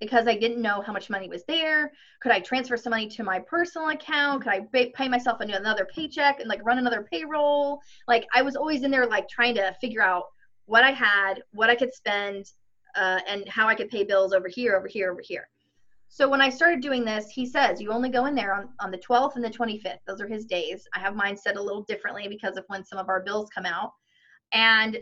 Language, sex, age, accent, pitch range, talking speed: English, female, 20-39, American, 200-255 Hz, 240 wpm